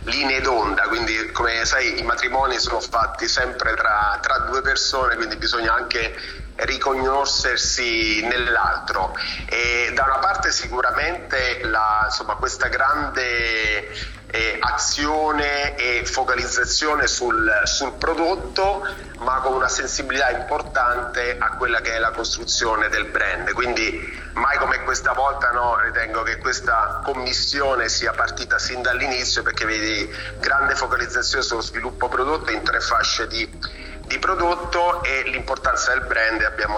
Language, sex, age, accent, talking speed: Italian, male, 30-49, native, 125 wpm